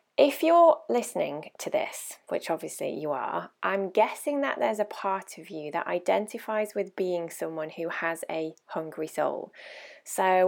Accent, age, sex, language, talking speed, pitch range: British, 20-39, female, English, 160 wpm, 165-205 Hz